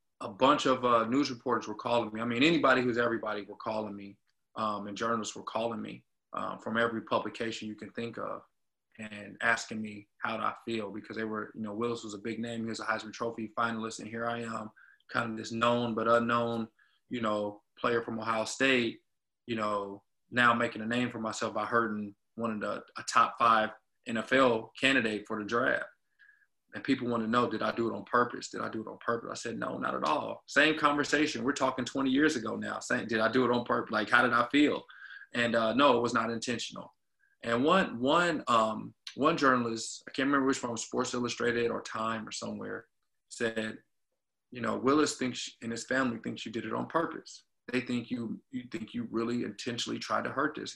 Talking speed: 220 wpm